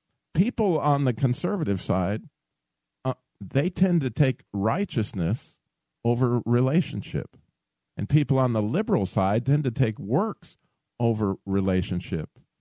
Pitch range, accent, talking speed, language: 110-170 Hz, American, 120 wpm, English